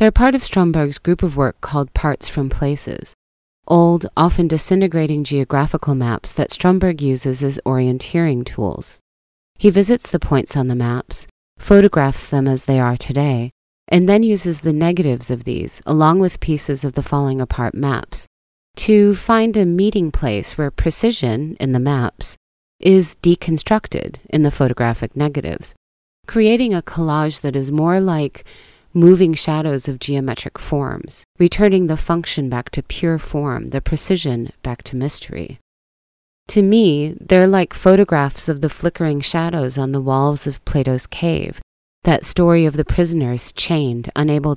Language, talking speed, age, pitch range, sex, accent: English, 150 wpm, 30-49, 130-170 Hz, female, American